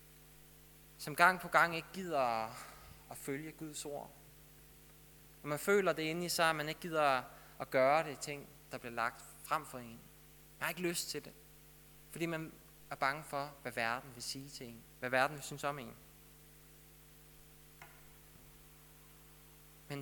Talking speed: 165 wpm